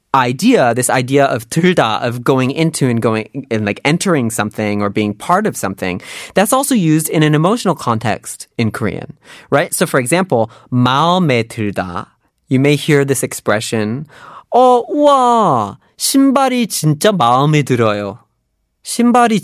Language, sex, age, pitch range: Korean, male, 30-49, 125-200 Hz